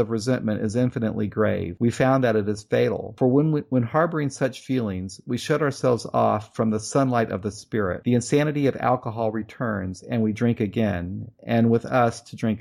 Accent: American